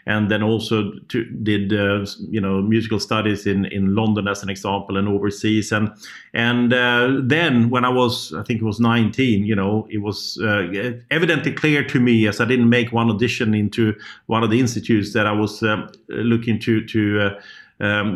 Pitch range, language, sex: 110-130 Hz, English, male